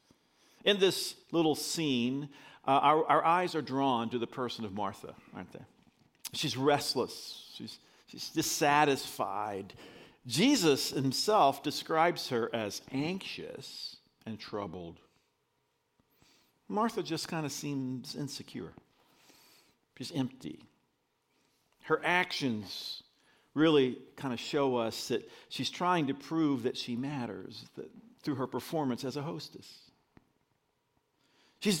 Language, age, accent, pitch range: English, 50-69, American, 125-160 Hz